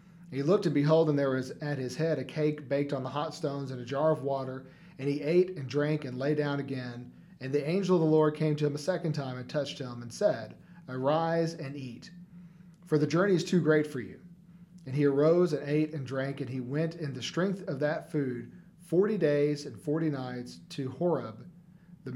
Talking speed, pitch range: 225 wpm, 135-175 Hz